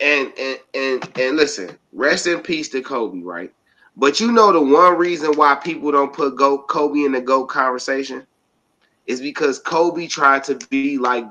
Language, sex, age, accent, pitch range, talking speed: English, male, 30-49, American, 145-230 Hz, 175 wpm